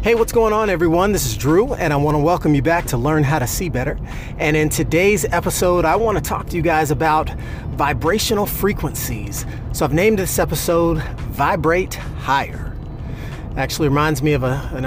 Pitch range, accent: 135-180 Hz, American